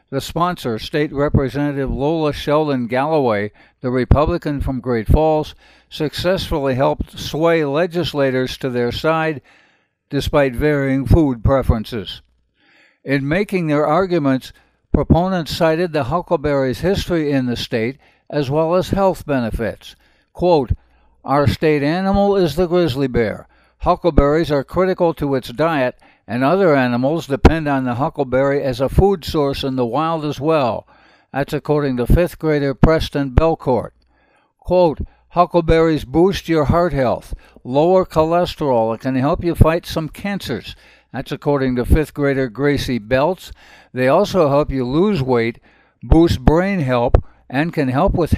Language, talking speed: English, 140 wpm